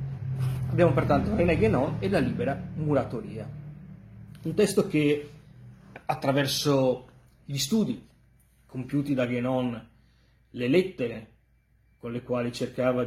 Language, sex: Italian, male